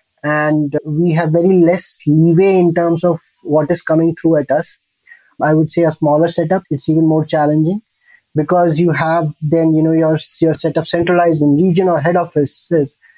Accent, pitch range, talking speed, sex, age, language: Indian, 155-180 Hz, 180 wpm, male, 20-39, English